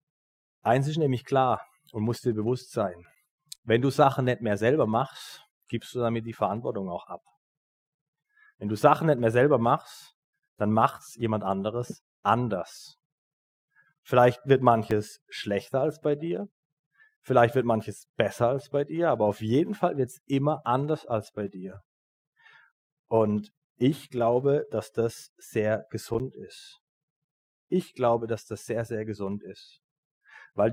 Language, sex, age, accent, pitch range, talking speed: German, male, 30-49, German, 110-150 Hz, 150 wpm